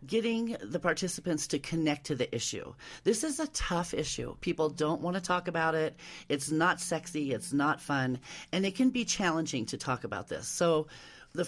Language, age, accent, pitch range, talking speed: English, 40-59, American, 130-175 Hz, 195 wpm